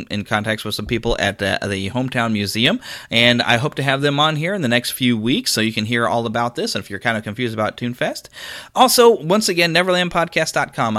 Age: 30-49